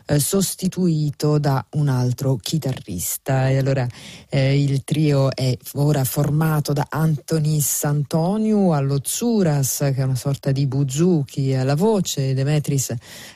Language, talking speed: Italian, 120 wpm